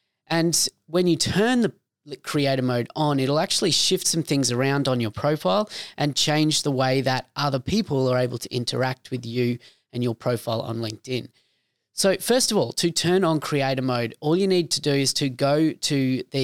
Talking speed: 195 wpm